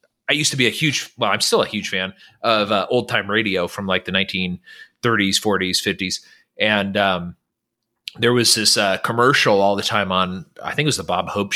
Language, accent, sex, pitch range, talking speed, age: English, American, male, 105-130 Hz, 215 wpm, 30-49